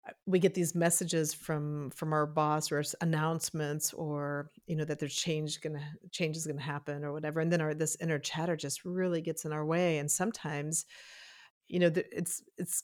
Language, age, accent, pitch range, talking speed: English, 40-59, American, 150-175 Hz, 200 wpm